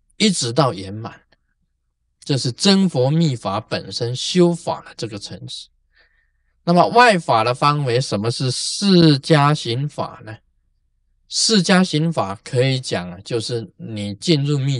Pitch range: 100-160 Hz